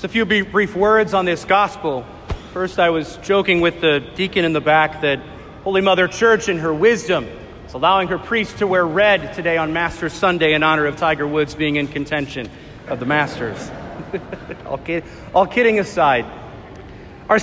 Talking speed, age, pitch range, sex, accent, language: 180 wpm, 40-59, 190-265 Hz, male, American, English